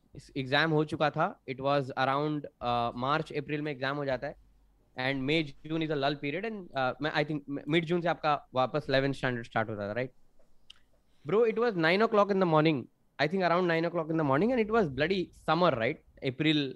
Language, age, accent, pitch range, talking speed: English, 20-39, Indian, 140-195 Hz, 210 wpm